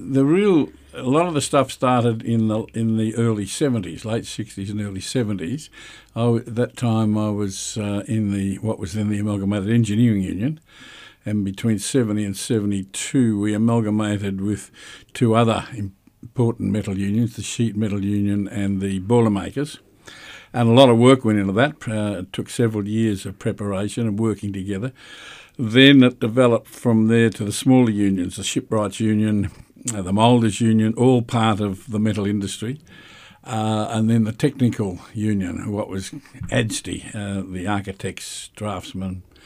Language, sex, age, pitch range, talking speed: English, male, 60-79, 100-120 Hz, 165 wpm